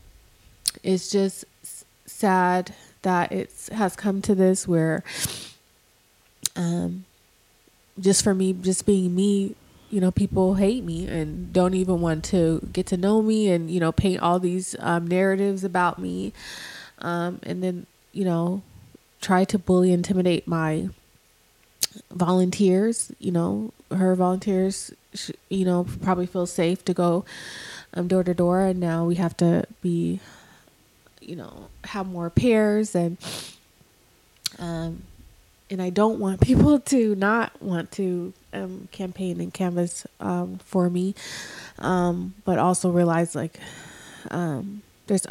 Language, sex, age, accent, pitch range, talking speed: English, female, 20-39, American, 170-195 Hz, 135 wpm